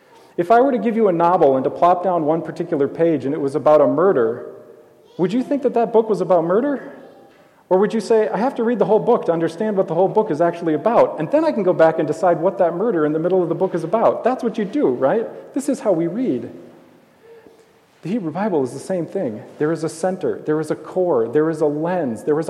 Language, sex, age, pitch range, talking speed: English, male, 40-59, 165-225 Hz, 265 wpm